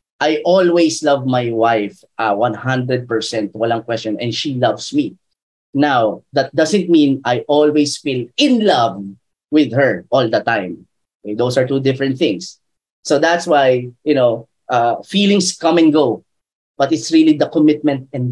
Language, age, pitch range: Filipino, 20-39, 125-165 Hz